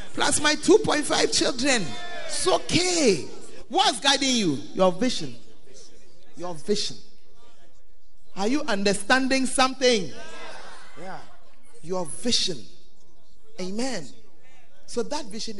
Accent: Nigerian